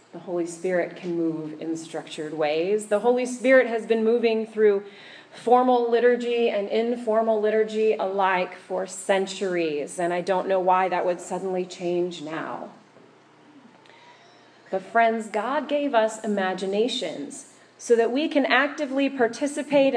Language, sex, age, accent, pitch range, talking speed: English, female, 30-49, American, 185-240 Hz, 135 wpm